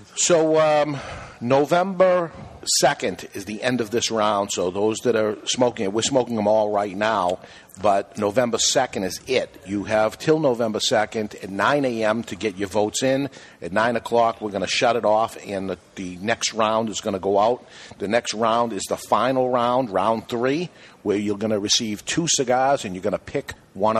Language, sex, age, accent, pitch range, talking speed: English, male, 50-69, American, 105-125 Hz, 205 wpm